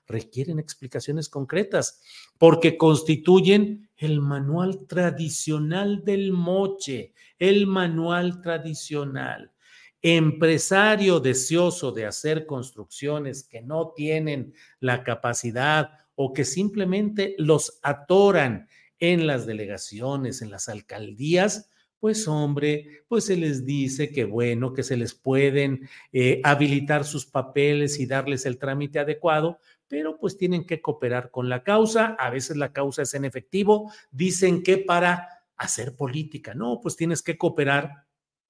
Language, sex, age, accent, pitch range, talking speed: Spanish, male, 50-69, Mexican, 130-170 Hz, 125 wpm